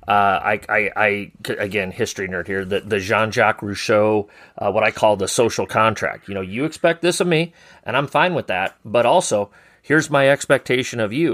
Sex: male